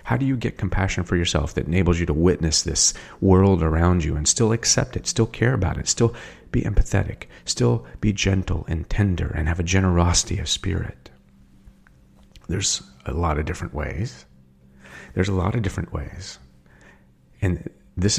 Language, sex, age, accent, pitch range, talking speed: English, male, 40-59, American, 65-105 Hz, 170 wpm